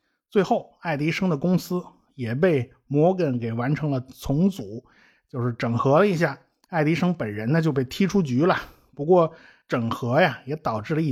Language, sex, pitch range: Chinese, male, 135-185 Hz